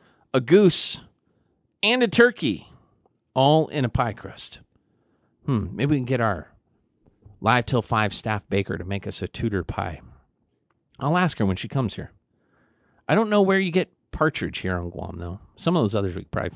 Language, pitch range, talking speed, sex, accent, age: English, 100-155 Hz, 190 wpm, male, American, 40-59